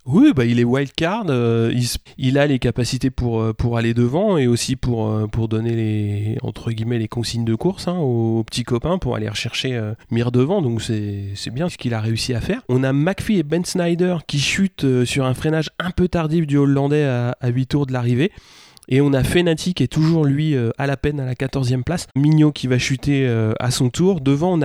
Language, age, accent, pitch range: French, 30-49, French, 125-155 Hz